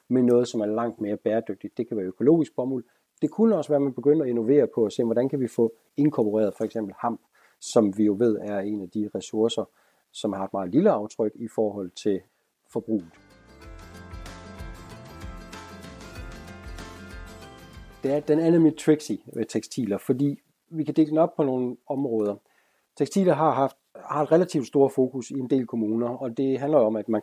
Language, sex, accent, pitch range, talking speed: Danish, male, native, 105-135 Hz, 185 wpm